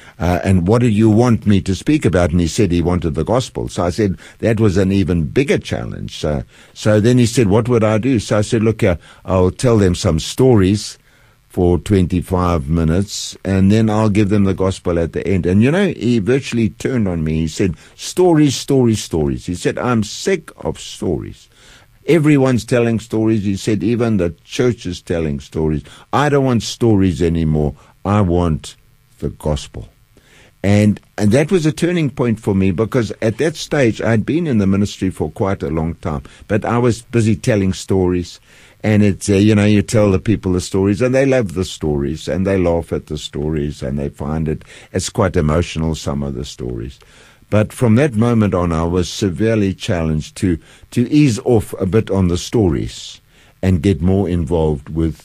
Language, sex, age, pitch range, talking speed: English, male, 60-79, 85-115 Hz, 200 wpm